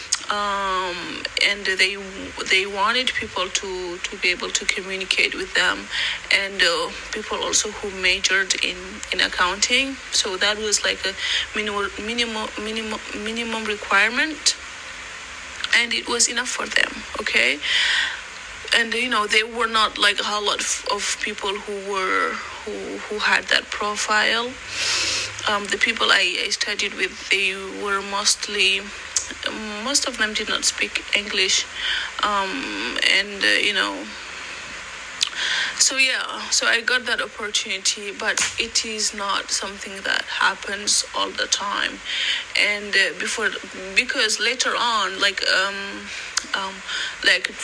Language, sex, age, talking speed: English, female, 30-49, 135 wpm